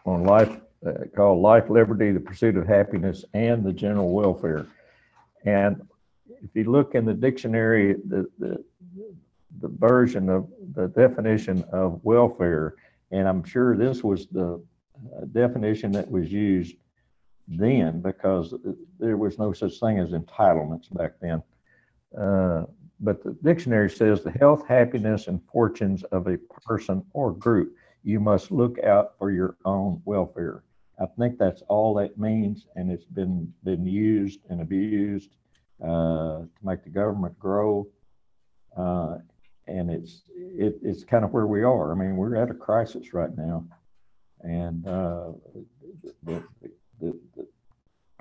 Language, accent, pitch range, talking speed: English, American, 90-110 Hz, 145 wpm